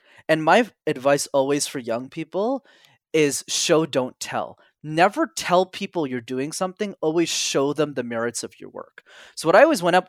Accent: American